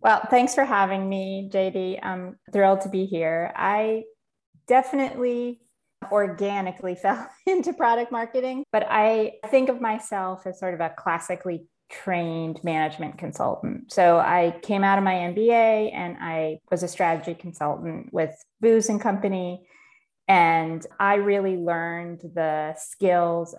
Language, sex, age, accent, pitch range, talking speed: English, female, 20-39, American, 170-205 Hz, 135 wpm